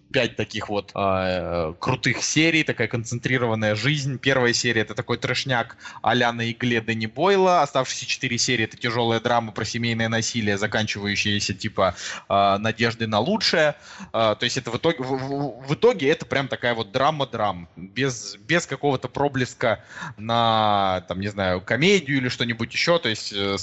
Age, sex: 20-39, male